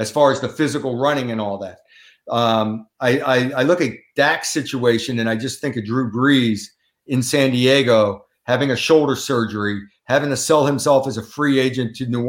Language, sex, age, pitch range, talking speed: English, male, 50-69, 115-140 Hz, 200 wpm